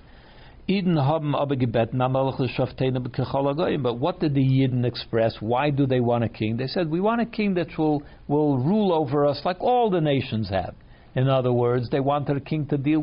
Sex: male